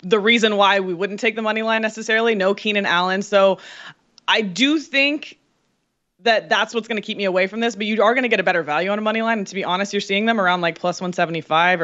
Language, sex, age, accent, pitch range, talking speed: English, female, 20-39, American, 185-230 Hz, 260 wpm